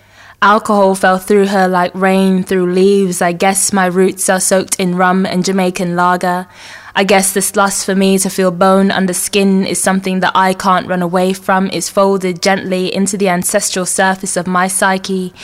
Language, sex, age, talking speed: English, female, 20-39, 185 wpm